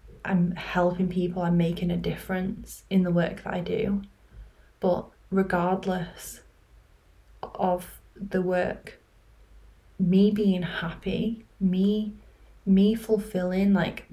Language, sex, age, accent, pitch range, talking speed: English, female, 10-29, British, 180-200 Hz, 105 wpm